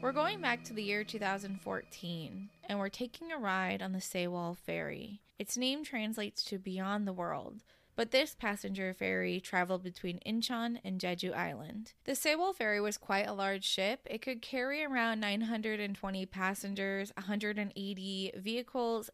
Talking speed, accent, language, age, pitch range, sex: 155 wpm, American, English, 20-39, 185-230 Hz, female